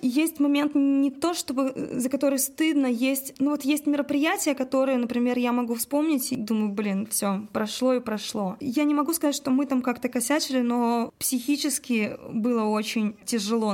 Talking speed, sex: 170 wpm, female